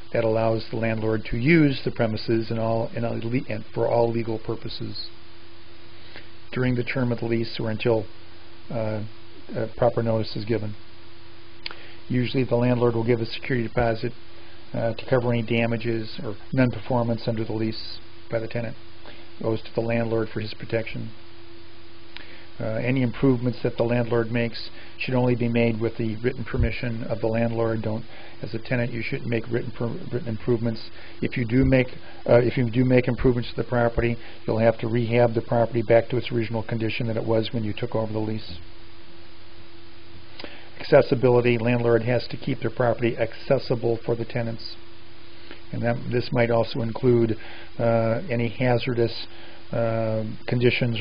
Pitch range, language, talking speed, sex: 110-120 Hz, English, 170 wpm, male